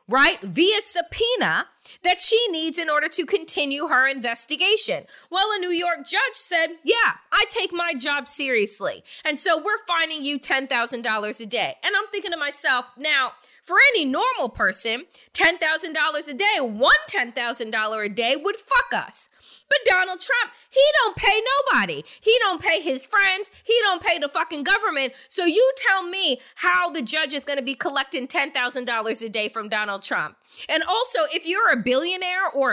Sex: female